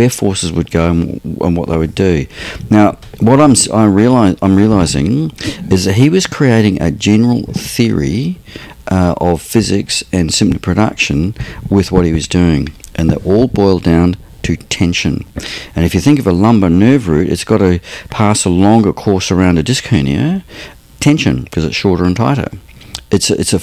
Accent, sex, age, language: Australian, male, 50-69, English